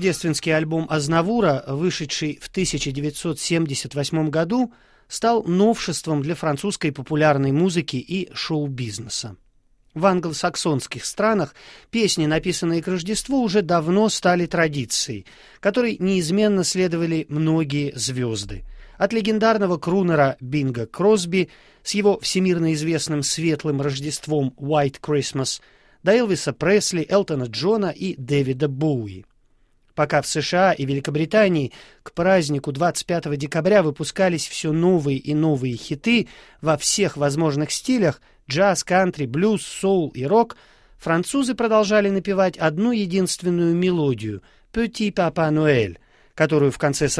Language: Russian